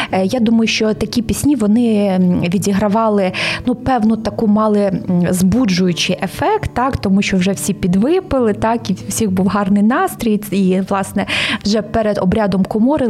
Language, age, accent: Ukrainian, 20-39, native